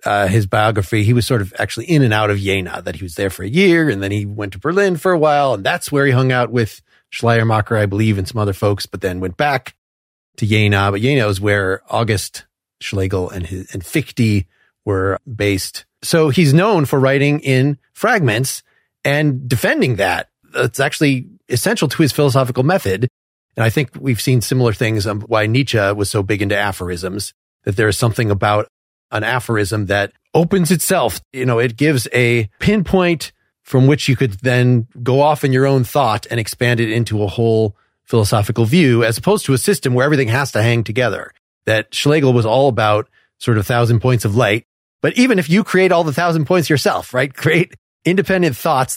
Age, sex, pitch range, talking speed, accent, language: 30-49, male, 105-145 Hz, 200 wpm, American, English